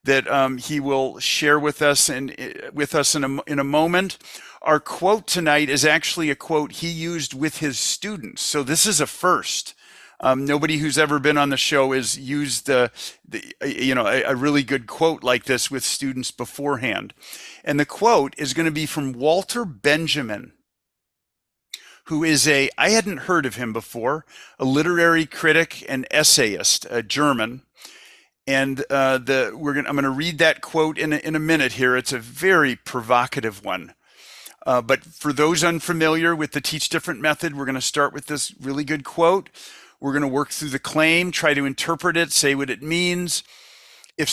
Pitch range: 135-160 Hz